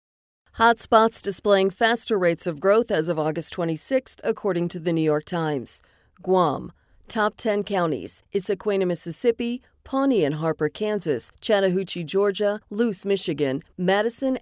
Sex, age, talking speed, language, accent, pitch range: female, 40-59, 130 wpm, English, American, 165-215 Hz